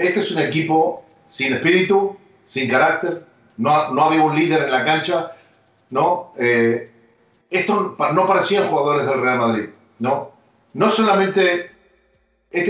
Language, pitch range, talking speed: Spanish, 140-195 Hz, 135 wpm